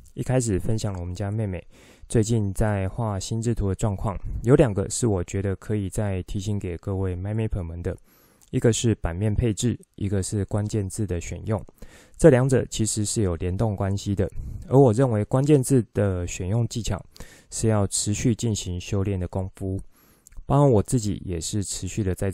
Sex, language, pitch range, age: male, Chinese, 95-115 Hz, 20-39